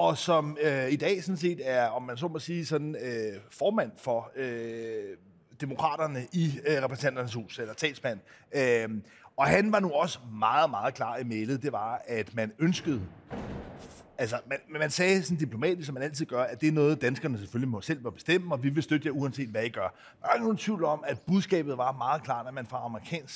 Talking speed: 215 wpm